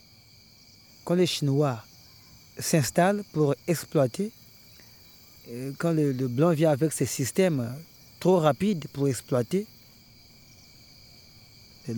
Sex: male